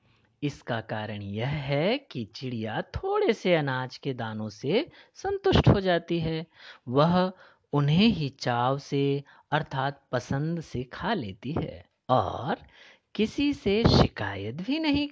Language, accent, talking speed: Hindi, native, 130 wpm